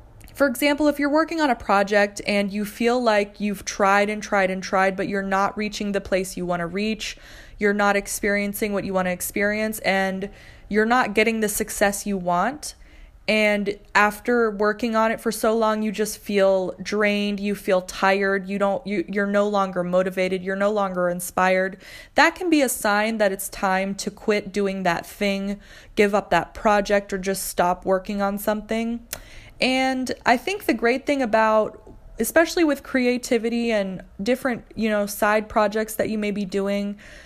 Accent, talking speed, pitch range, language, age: American, 180 wpm, 195-240 Hz, English, 20-39